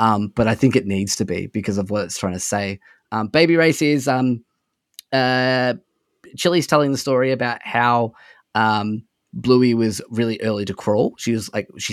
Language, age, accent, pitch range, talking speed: English, 20-39, Australian, 105-130 Hz, 190 wpm